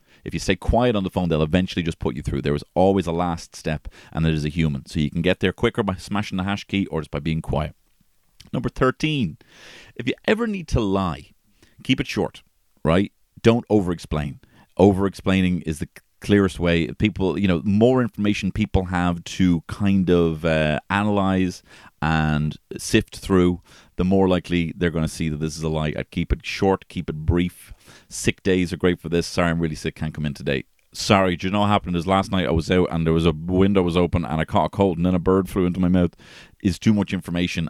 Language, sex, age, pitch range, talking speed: English, male, 30-49, 80-100 Hz, 230 wpm